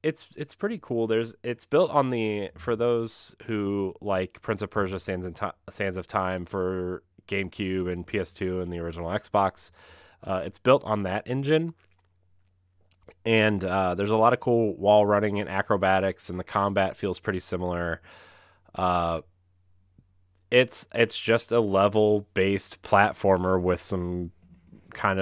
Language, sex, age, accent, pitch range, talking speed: English, male, 30-49, American, 90-105 Hz, 150 wpm